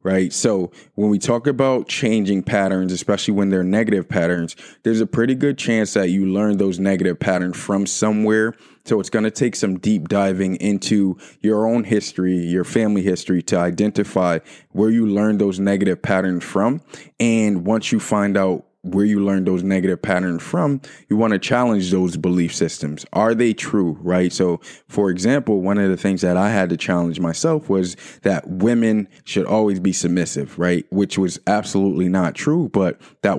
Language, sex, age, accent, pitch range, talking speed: English, male, 20-39, American, 90-110 Hz, 180 wpm